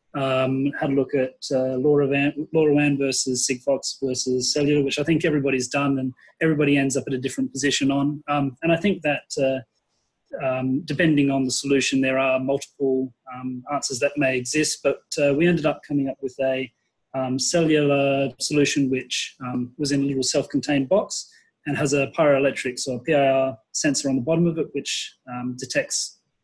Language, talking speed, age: English, 185 wpm, 30-49